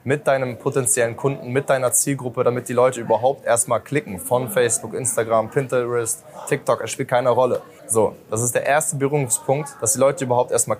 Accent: German